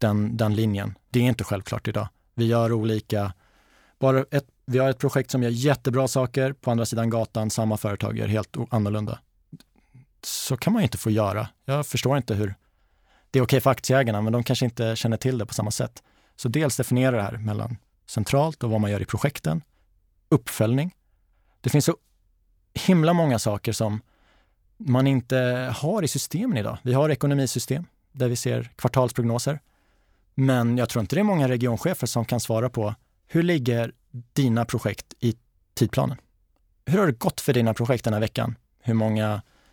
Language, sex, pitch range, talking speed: Swedish, male, 110-130 Hz, 185 wpm